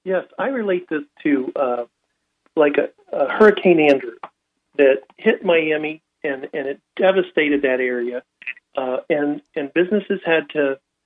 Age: 50-69